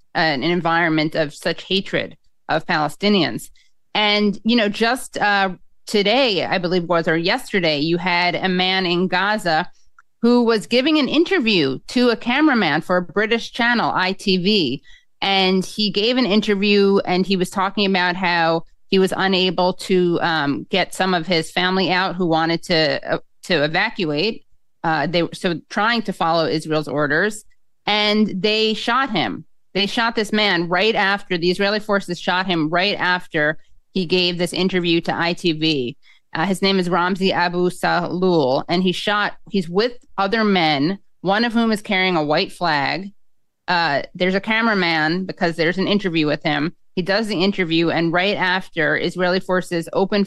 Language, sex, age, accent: English, female, 30-49, American